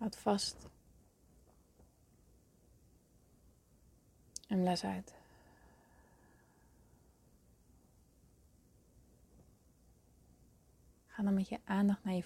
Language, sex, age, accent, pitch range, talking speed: Dutch, female, 30-49, Dutch, 160-200 Hz, 60 wpm